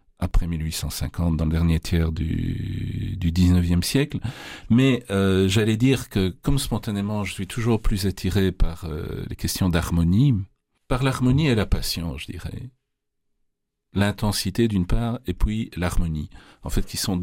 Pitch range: 85-105 Hz